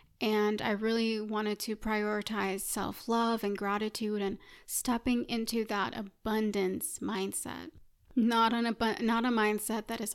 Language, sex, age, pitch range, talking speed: English, female, 20-39, 210-235 Hz, 125 wpm